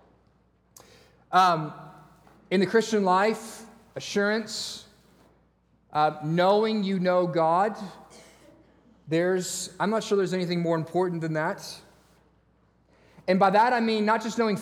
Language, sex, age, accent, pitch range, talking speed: English, male, 40-59, American, 165-210 Hz, 110 wpm